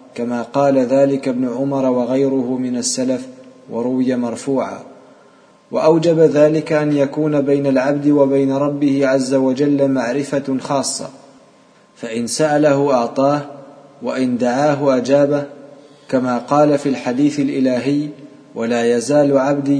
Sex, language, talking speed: male, Arabic, 110 wpm